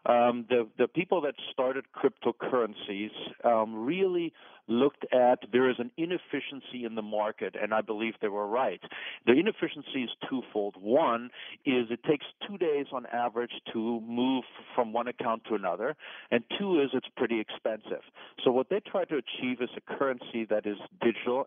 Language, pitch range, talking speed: English, 115-135 Hz, 170 wpm